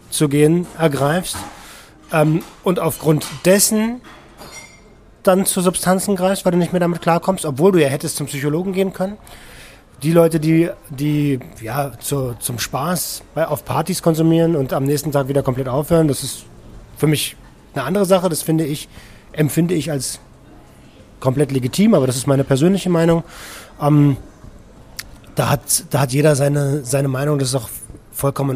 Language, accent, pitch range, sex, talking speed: German, German, 135-165 Hz, male, 160 wpm